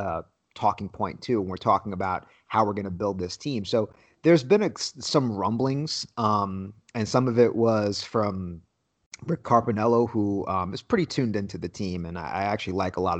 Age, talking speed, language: 30-49, 205 wpm, English